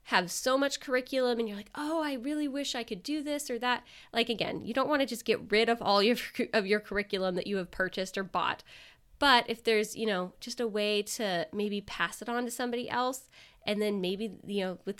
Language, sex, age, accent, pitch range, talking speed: English, female, 20-39, American, 200-255 Hz, 240 wpm